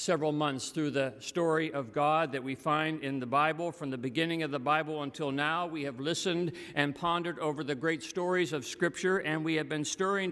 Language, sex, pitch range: English, male, 160-205 Hz